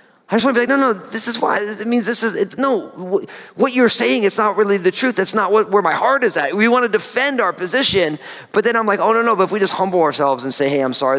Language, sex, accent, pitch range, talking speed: English, male, American, 140-205 Hz, 305 wpm